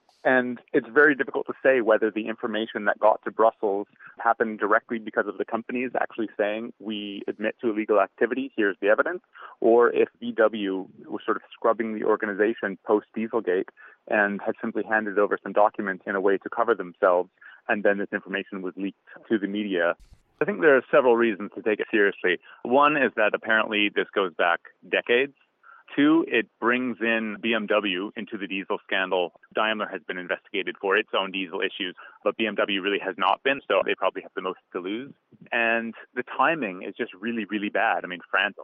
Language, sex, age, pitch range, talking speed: English, male, 30-49, 100-115 Hz, 190 wpm